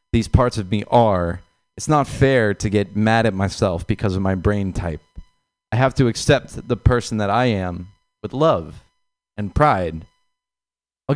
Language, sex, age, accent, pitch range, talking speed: English, male, 30-49, American, 100-140 Hz, 170 wpm